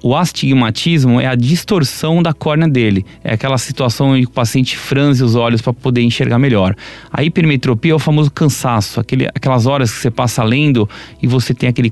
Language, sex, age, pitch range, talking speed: Portuguese, male, 30-49, 120-140 Hz, 190 wpm